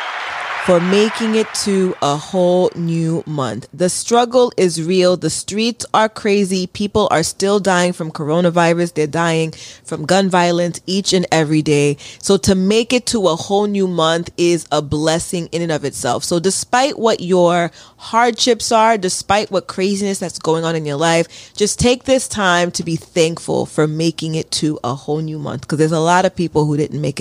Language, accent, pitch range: English, American, 160-210 Hz